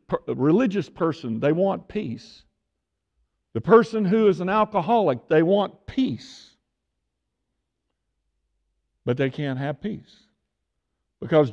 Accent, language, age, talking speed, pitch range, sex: American, English, 60-79, 105 wpm, 110-175 Hz, male